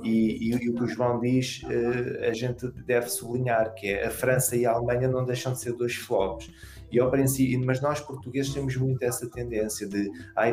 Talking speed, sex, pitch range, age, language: 215 wpm, male, 105-125 Hz, 20-39, Portuguese